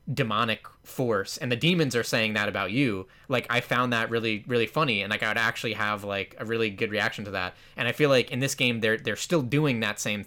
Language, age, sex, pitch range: English, 20-39, male, 105-120 Hz